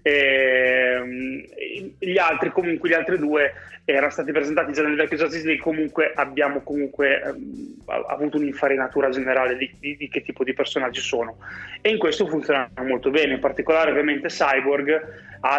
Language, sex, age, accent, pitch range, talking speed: Italian, male, 20-39, native, 135-165 Hz, 150 wpm